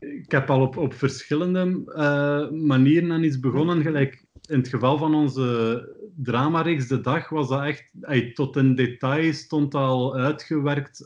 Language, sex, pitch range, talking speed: Dutch, male, 125-145 Hz, 165 wpm